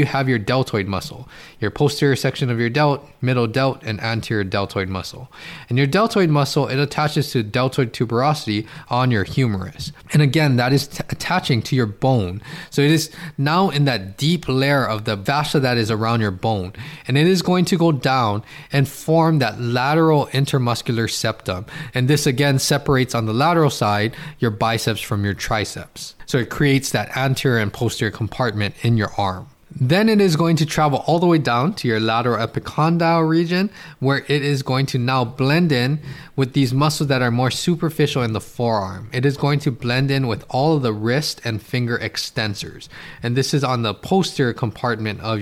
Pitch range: 115-150 Hz